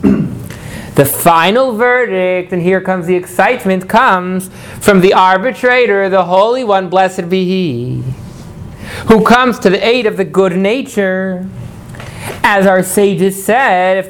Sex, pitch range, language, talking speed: male, 165-205 Hz, English, 135 wpm